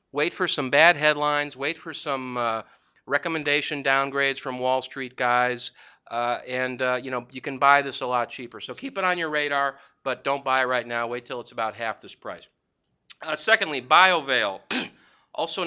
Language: English